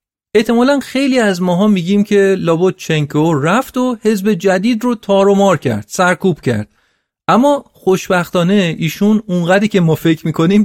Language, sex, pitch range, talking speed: Persian, male, 150-210 Hz, 140 wpm